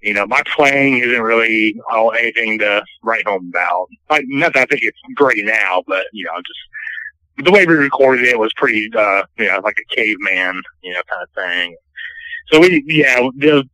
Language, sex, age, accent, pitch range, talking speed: English, male, 30-49, American, 105-155 Hz, 200 wpm